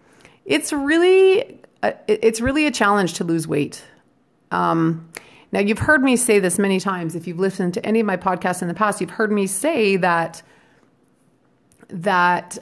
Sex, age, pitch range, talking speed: female, 30-49, 180-235 Hz, 165 wpm